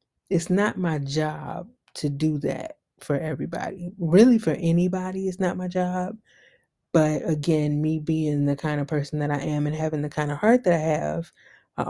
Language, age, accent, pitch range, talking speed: English, 20-39, American, 145-170 Hz, 185 wpm